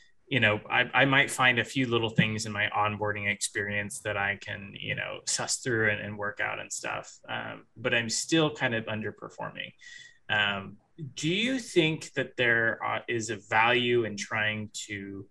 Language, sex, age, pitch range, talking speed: English, male, 20-39, 110-135 Hz, 185 wpm